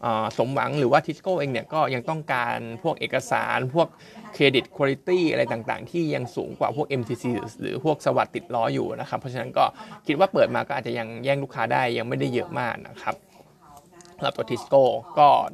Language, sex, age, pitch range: Thai, male, 20-39, 130-170 Hz